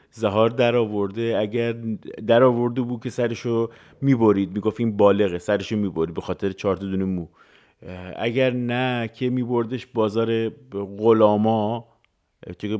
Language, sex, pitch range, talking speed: Persian, male, 100-125 Hz, 130 wpm